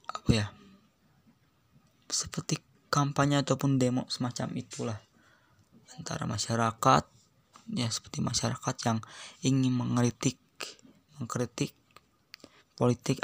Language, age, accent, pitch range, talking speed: Indonesian, 20-39, native, 115-140 Hz, 80 wpm